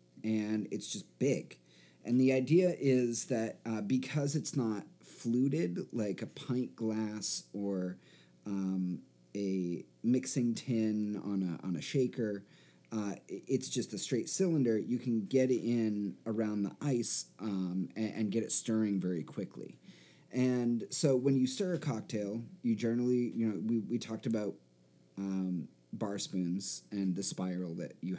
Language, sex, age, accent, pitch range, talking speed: English, male, 30-49, American, 100-130 Hz, 155 wpm